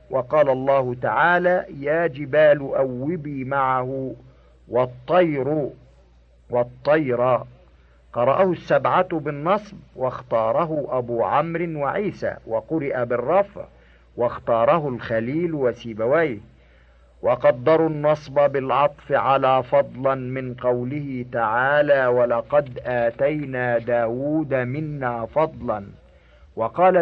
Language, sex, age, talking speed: Arabic, male, 50-69, 80 wpm